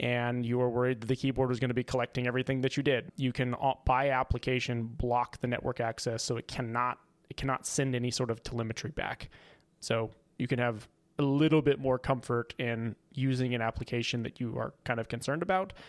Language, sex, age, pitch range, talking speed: English, male, 20-39, 115-135 Hz, 210 wpm